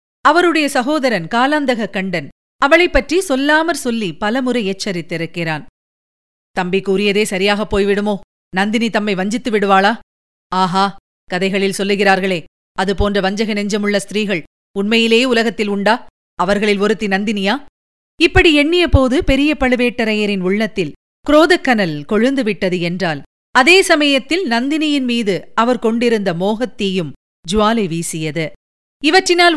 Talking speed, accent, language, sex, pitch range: 100 wpm, native, Tamil, female, 195-270 Hz